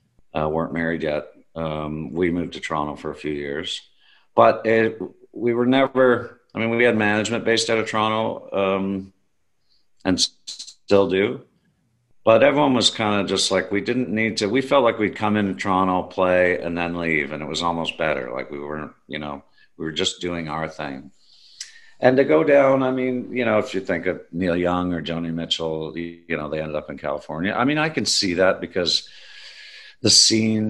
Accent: American